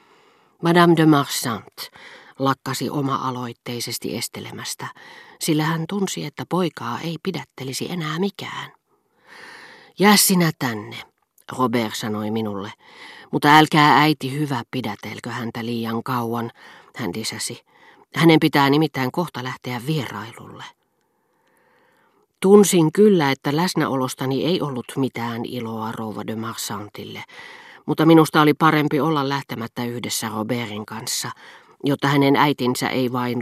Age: 40-59